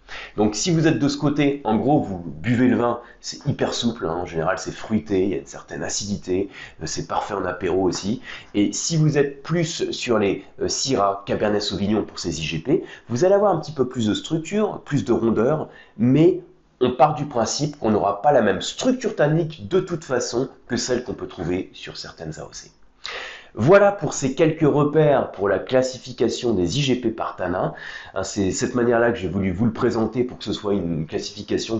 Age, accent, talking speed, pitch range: 30-49, French, 200 wpm, 100-145 Hz